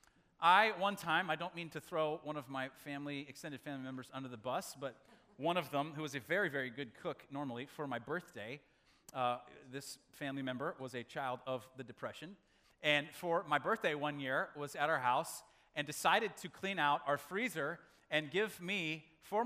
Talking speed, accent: 195 wpm, American